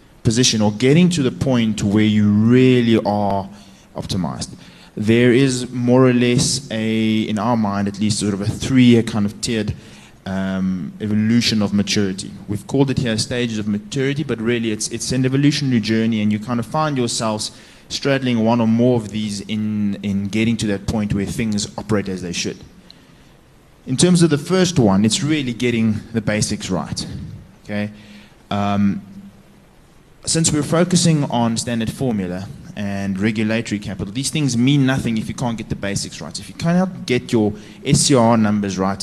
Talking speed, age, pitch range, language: 175 wpm, 20-39, 105-125 Hz, English